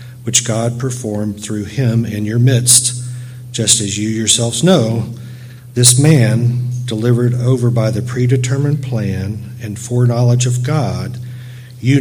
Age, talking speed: 50-69, 130 wpm